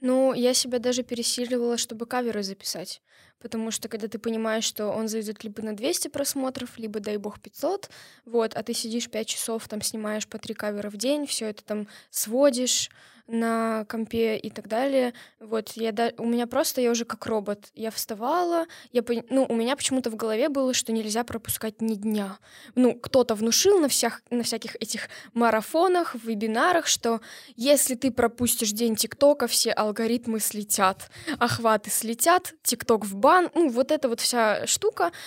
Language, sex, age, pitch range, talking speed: Russian, female, 10-29, 220-260 Hz, 175 wpm